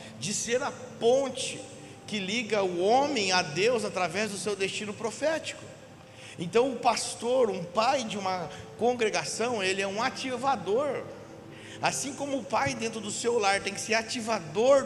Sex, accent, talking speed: male, Brazilian, 160 wpm